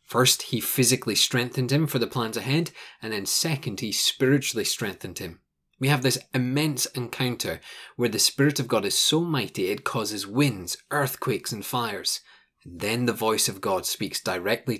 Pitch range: 110-140 Hz